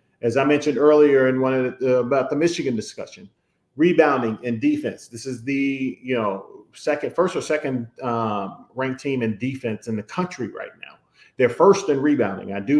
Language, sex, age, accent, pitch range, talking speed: English, male, 40-59, American, 115-140 Hz, 190 wpm